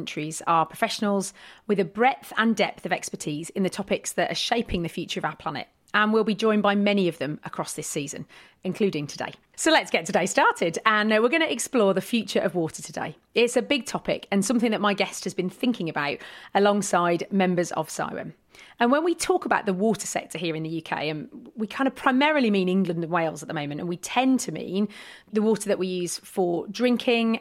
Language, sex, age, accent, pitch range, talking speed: English, female, 30-49, British, 175-225 Hz, 220 wpm